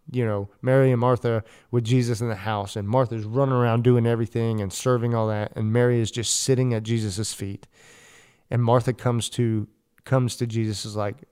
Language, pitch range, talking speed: English, 105-120 Hz, 195 wpm